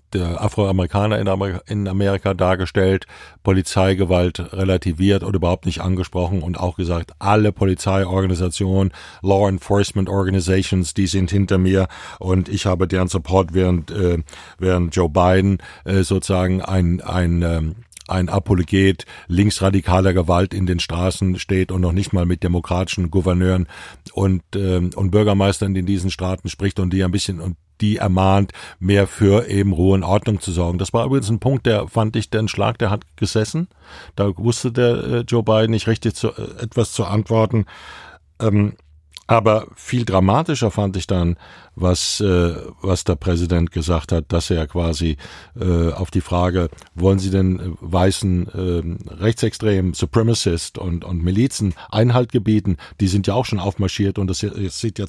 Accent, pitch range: German, 90-100 Hz